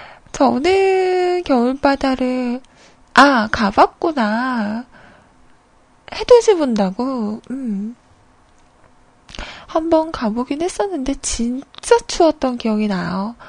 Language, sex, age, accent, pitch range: Korean, female, 20-39, native, 220-320 Hz